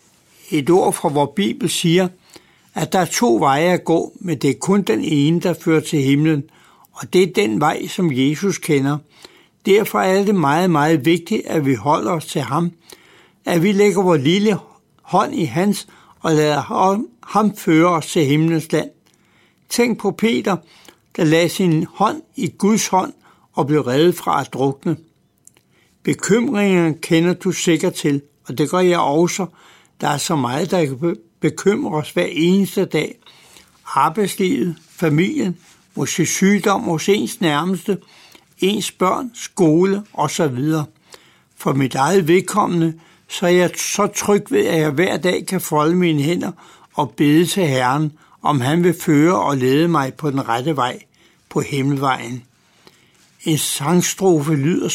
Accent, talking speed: native, 155 wpm